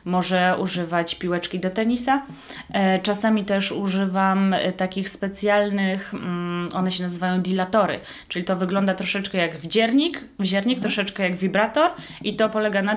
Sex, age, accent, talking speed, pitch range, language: female, 20-39, native, 130 wpm, 185-235 Hz, Polish